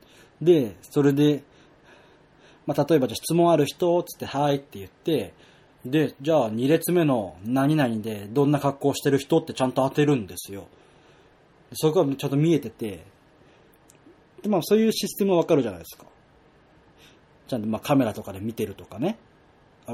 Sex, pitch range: male, 115-150 Hz